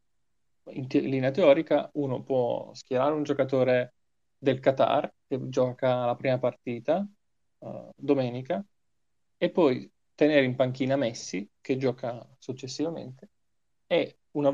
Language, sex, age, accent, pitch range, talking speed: Italian, male, 20-39, native, 125-140 Hz, 115 wpm